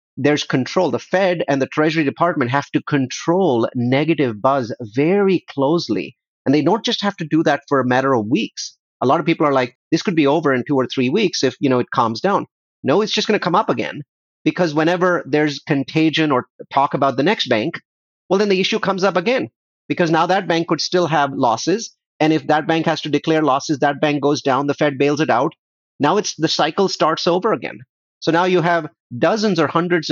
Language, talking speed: English, 225 wpm